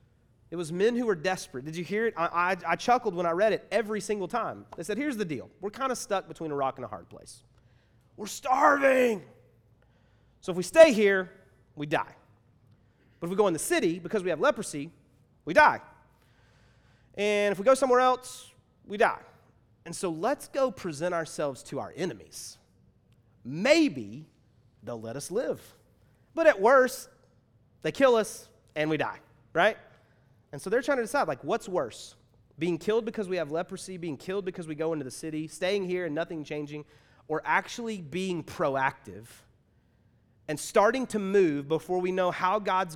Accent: American